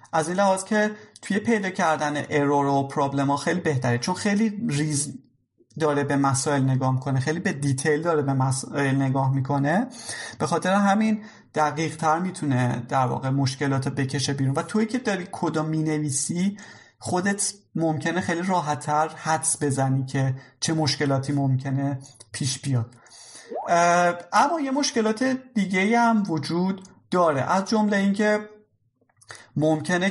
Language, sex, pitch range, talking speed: Persian, male, 135-180 Hz, 135 wpm